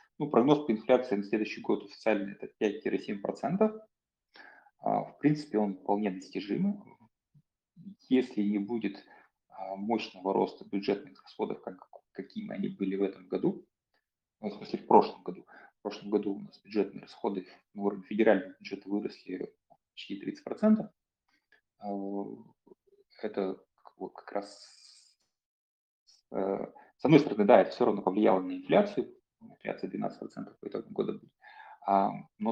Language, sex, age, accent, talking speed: Russian, male, 30-49, native, 120 wpm